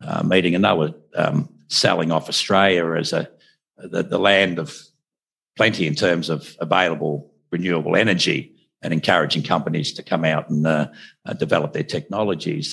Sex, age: male, 60-79